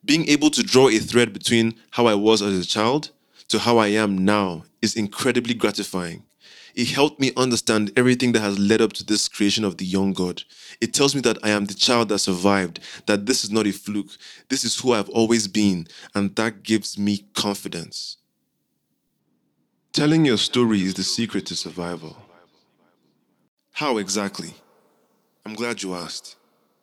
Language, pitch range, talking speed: English, 100-120 Hz, 175 wpm